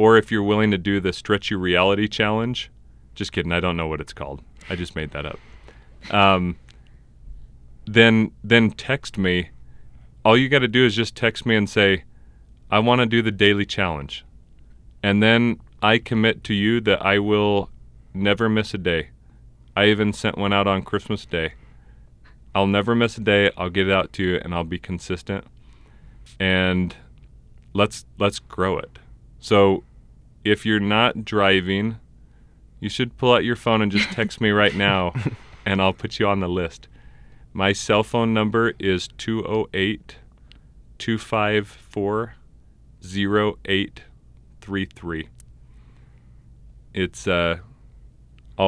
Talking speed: 145 wpm